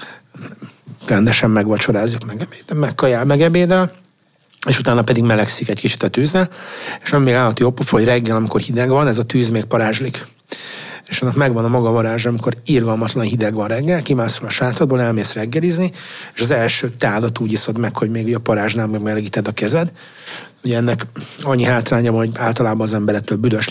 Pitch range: 115-135 Hz